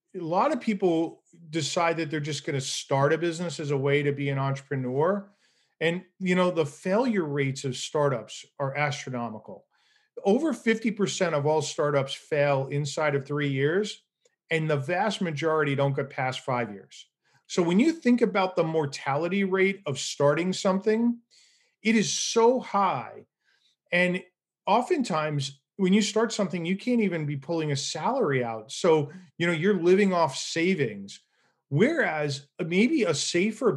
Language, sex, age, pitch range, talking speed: English, male, 40-59, 145-195 Hz, 160 wpm